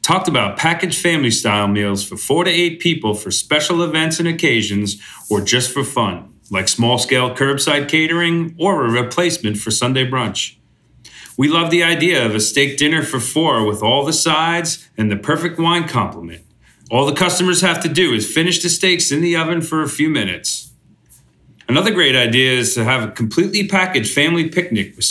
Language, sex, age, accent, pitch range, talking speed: English, male, 40-59, American, 110-160 Hz, 185 wpm